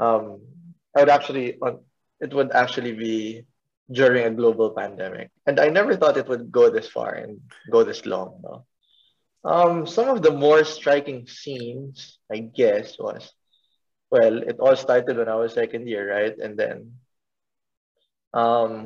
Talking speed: 160 wpm